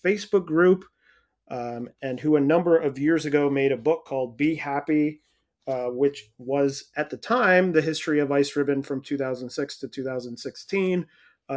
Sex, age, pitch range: male, 30-49, 130-155 Hz